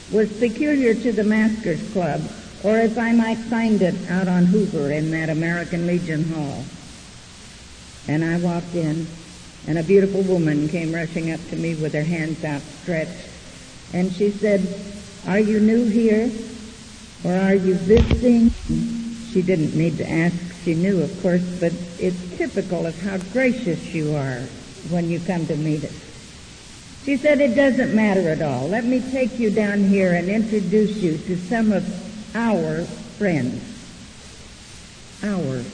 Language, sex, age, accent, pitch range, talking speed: English, female, 60-79, American, 165-215 Hz, 155 wpm